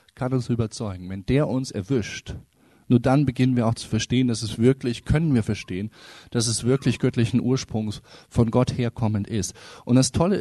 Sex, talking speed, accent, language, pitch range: male, 185 wpm, German, German, 115-145 Hz